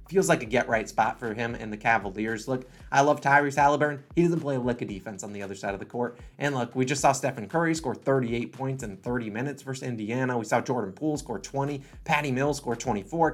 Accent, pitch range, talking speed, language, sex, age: American, 120-165 Hz, 250 wpm, English, male, 30-49